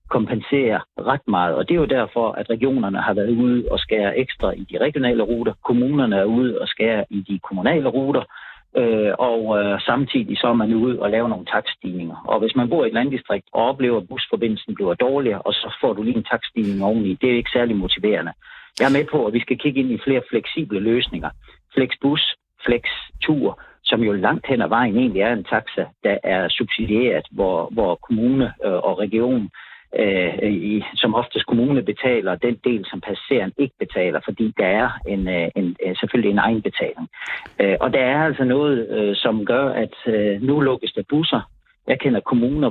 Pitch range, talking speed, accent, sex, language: 105-135 Hz, 195 wpm, native, male, Danish